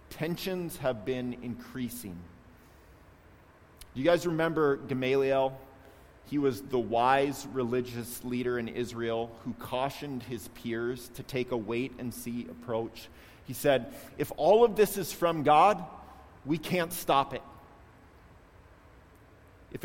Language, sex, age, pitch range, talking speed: English, male, 30-49, 105-140 Hz, 120 wpm